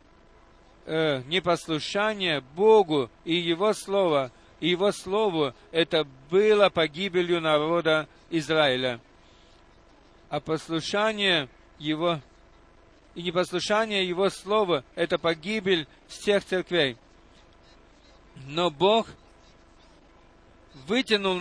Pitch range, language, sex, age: 135-190 Hz, Russian, male, 50-69